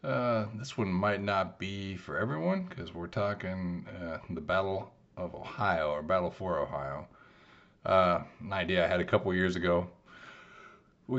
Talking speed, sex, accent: 160 wpm, male, American